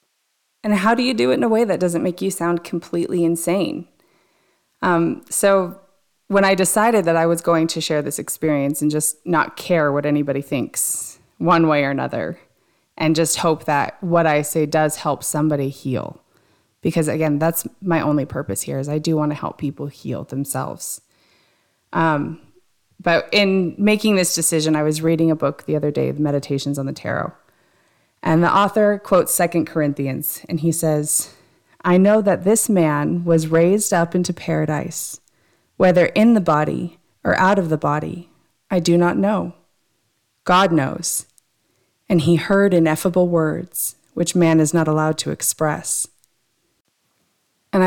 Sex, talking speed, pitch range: female, 165 wpm, 155-185 Hz